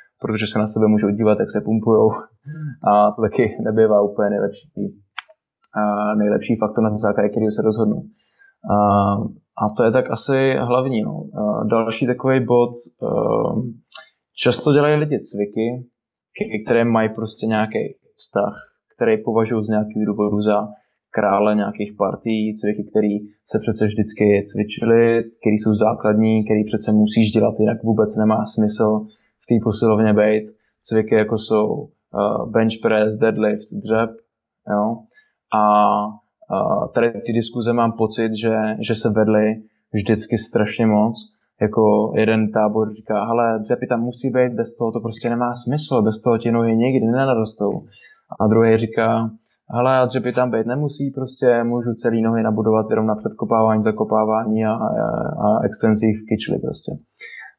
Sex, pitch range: male, 105-120 Hz